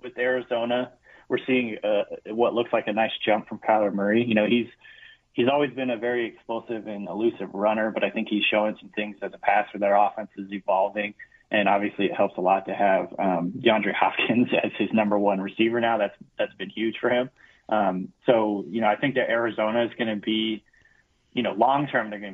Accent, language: American, English